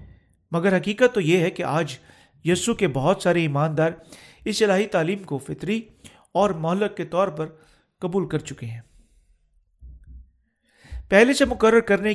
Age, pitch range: 40-59, 150-200 Hz